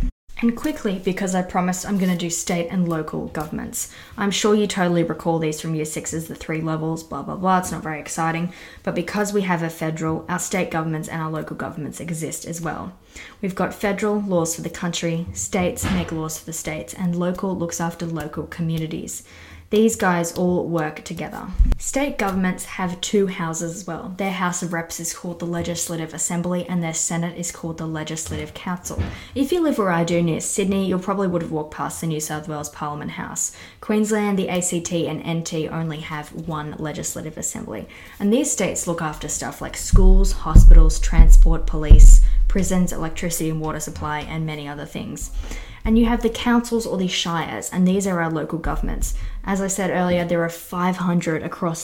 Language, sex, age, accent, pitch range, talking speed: English, female, 20-39, Australian, 160-185 Hz, 195 wpm